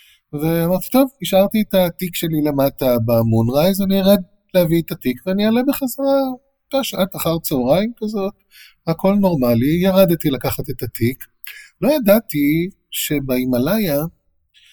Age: 30-49